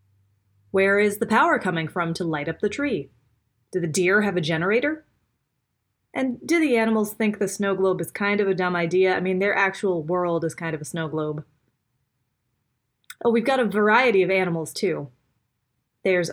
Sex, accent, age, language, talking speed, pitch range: female, American, 20-39, English, 185 wpm, 160-220 Hz